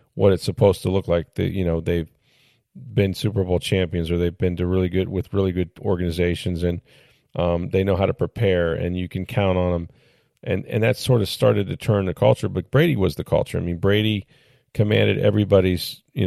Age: 40-59